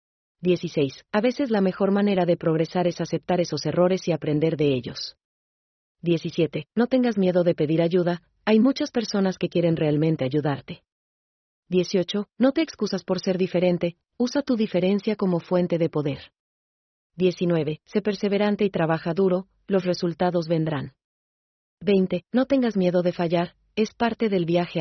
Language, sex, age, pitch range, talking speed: Spanish, female, 40-59, 160-190 Hz, 150 wpm